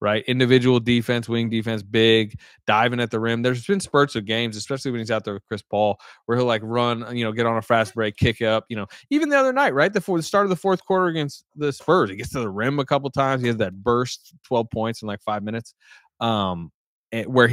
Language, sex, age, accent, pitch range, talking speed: English, male, 20-39, American, 105-130 Hz, 255 wpm